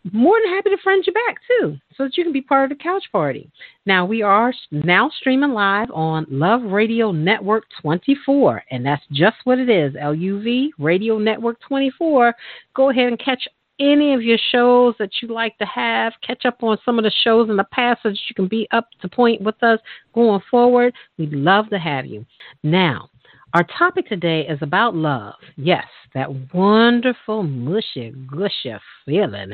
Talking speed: 185 wpm